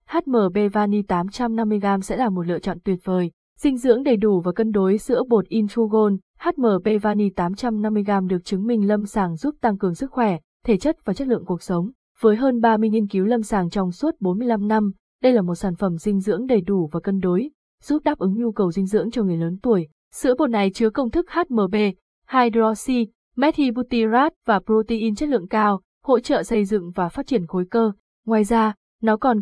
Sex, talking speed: female, 205 wpm